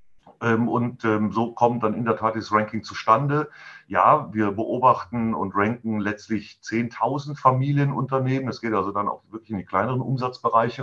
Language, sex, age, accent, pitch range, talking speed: German, male, 40-59, German, 105-120 Hz, 155 wpm